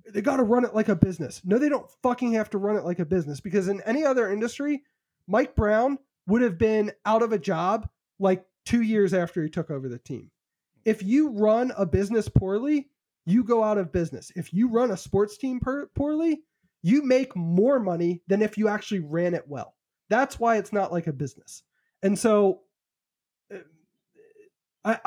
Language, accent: English, American